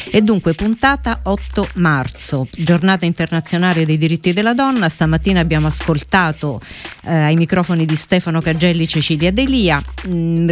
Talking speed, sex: 130 wpm, female